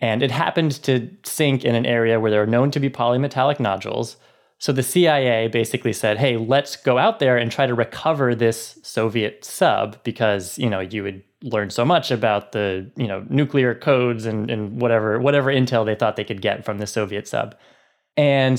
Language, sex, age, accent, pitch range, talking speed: English, male, 20-39, American, 110-135 Hz, 200 wpm